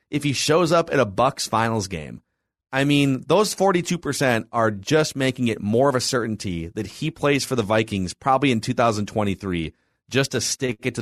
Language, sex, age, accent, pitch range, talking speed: English, male, 30-49, American, 105-135 Hz, 190 wpm